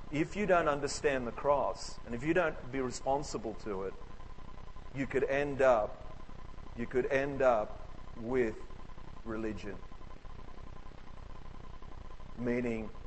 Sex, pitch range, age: male, 100-125 Hz, 40-59